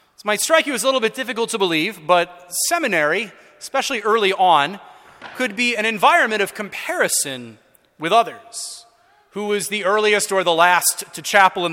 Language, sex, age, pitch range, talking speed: English, male, 30-49, 160-230 Hz, 170 wpm